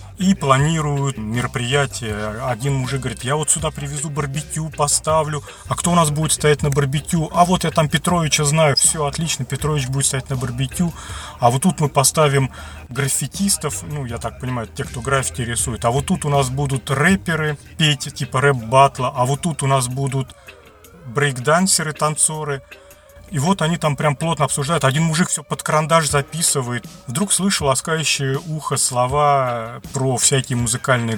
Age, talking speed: 30-49, 165 wpm